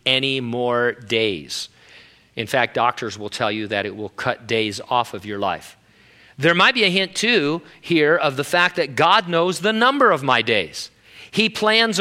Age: 40-59